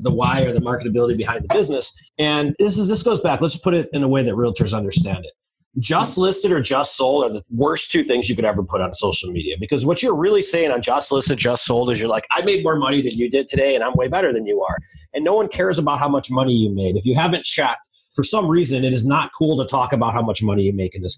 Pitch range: 125-180 Hz